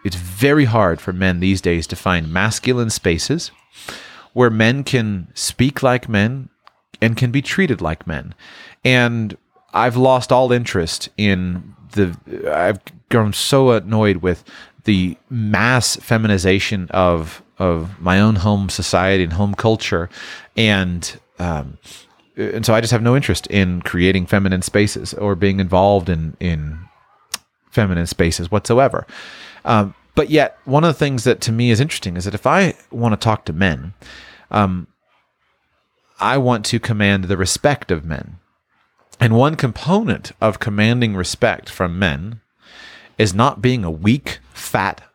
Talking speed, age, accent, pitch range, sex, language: 150 wpm, 30-49, American, 90-125 Hz, male, English